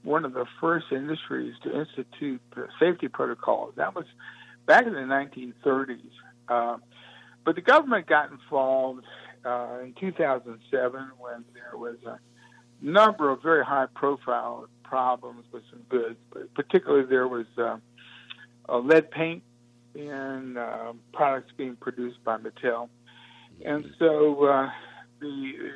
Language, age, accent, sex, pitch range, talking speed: English, 60-79, American, male, 120-150 Hz, 130 wpm